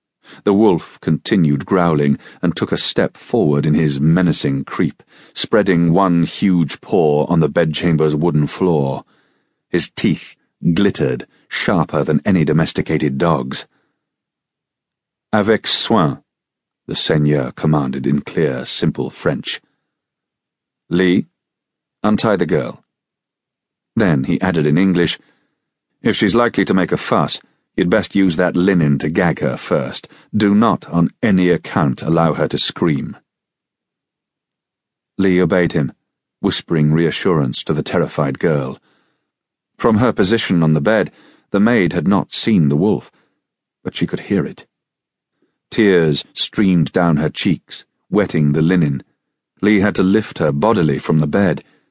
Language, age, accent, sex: English, 40-59, British, male